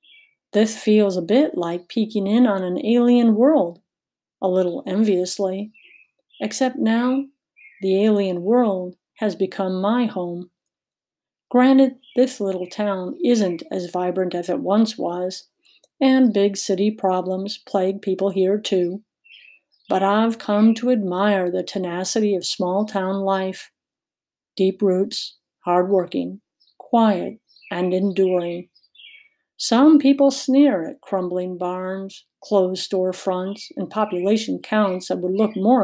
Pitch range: 185-225 Hz